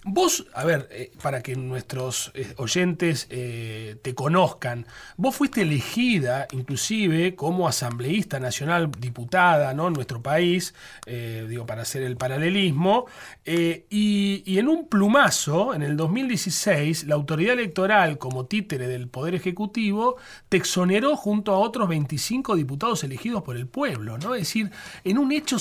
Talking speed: 145 wpm